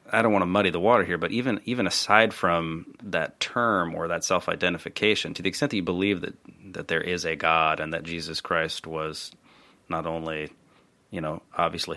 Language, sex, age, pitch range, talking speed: English, male, 30-49, 80-95 Hz, 200 wpm